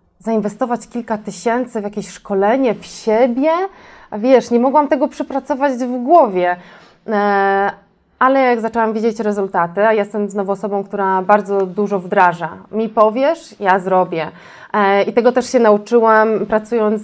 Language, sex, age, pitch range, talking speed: Polish, female, 20-39, 195-225 Hz, 135 wpm